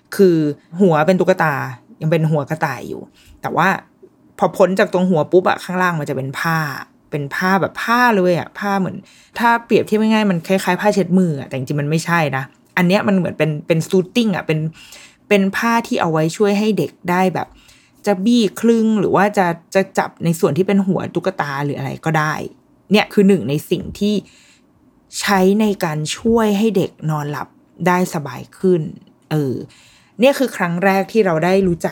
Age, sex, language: 20-39, female, Thai